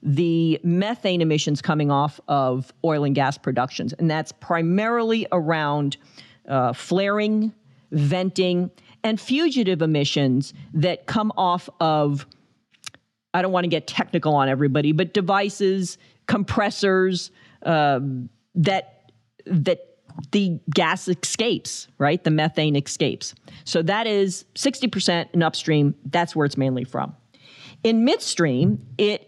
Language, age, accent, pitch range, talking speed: English, 50-69, American, 150-195 Hz, 120 wpm